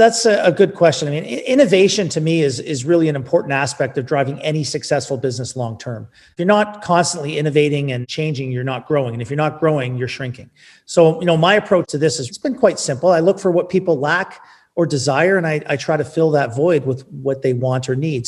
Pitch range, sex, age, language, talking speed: 135-165 Hz, male, 40-59, English, 240 wpm